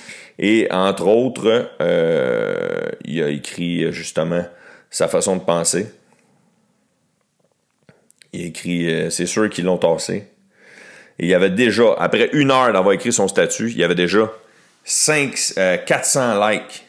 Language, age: French, 40-59